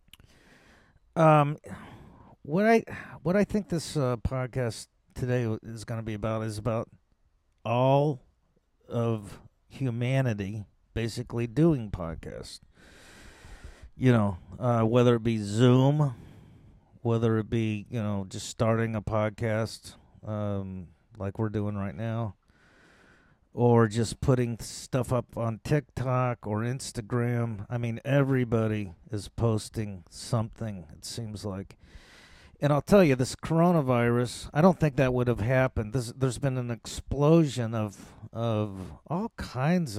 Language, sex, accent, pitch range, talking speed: English, male, American, 105-135 Hz, 130 wpm